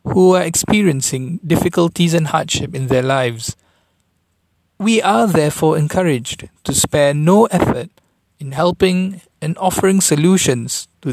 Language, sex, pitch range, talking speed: English, male, 125-175 Hz, 125 wpm